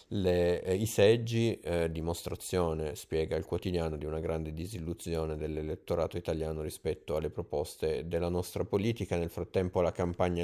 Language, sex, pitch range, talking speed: Italian, male, 80-95 Hz, 145 wpm